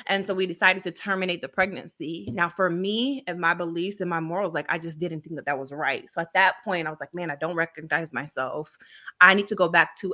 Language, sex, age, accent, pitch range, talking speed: English, female, 20-39, American, 165-200 Hz, 260 wpm